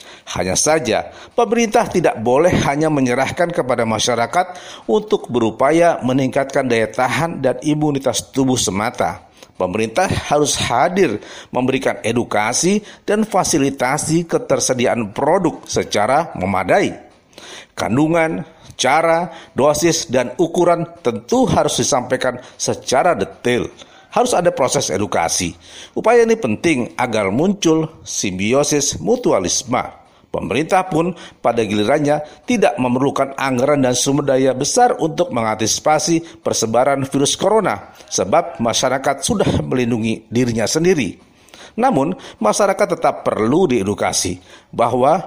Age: 50-69